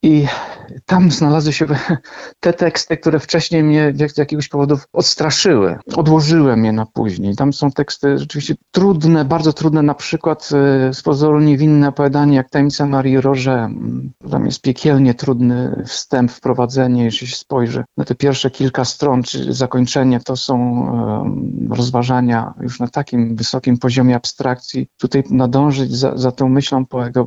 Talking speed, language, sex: 145 wpm, Polish, male